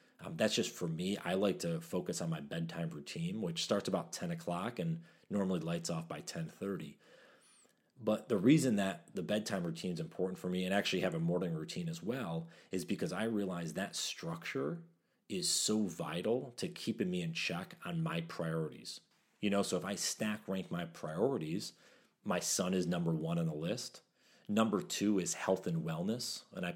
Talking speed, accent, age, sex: 190 wpm, American, 30-49, male